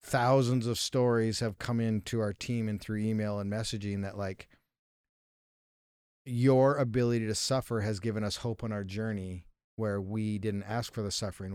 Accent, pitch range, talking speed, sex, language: American, 105-120 Hz, 170 wpm, male, English